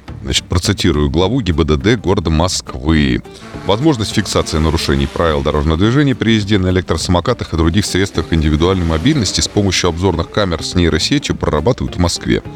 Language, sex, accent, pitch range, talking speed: Russian, male, native, 80-100 Hz, 145 wpm